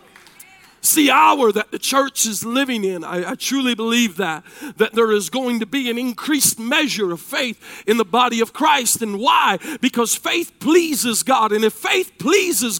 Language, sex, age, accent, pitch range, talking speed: English, male, 40-59, American, 240-335 Hz, 190 wpm